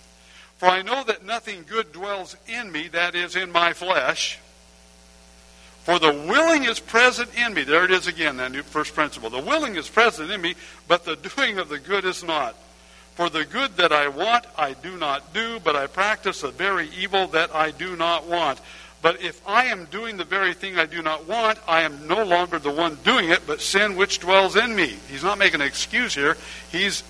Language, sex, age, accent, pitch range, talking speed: English, male, 60-79, American, 140-200 Hz, 215 wpm